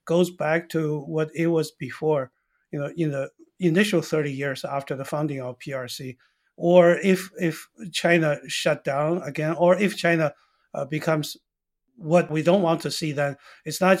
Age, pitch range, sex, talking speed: 60-79, 140-170 Hz, male, 170 wpm